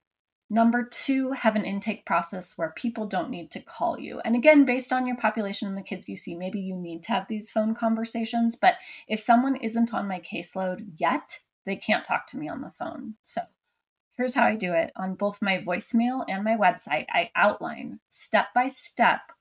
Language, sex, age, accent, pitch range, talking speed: English, female, 20-39, American, 190-245 Hz, 205 wpm